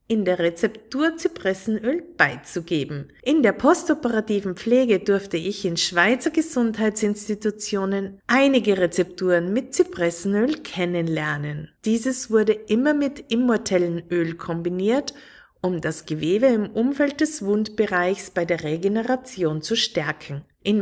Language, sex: German, female